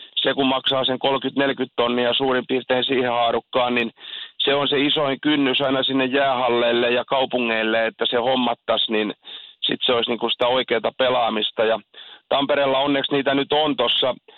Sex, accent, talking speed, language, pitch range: male, native, 165 wpm, Finnish, 120-135 Hz